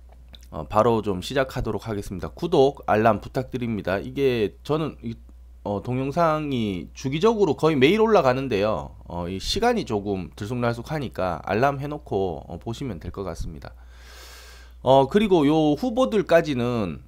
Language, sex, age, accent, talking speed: English, male, 30-49, Korean, 110 wpm